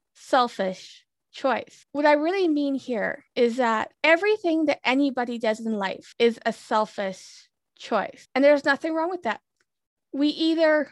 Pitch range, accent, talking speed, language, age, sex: 225-285 Hz, American, 150 wpm, English, 20-39, female